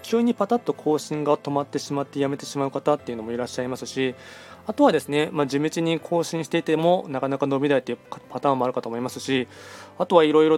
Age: 20-39